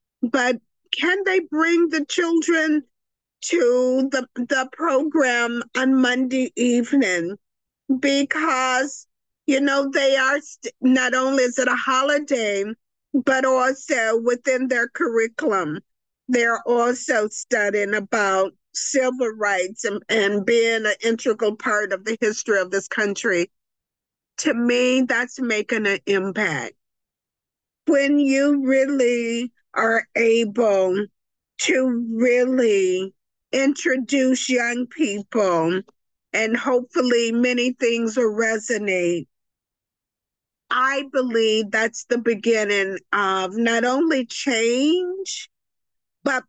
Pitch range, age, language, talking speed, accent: 215-265 Hz, 50-69, English, 105 wpm, American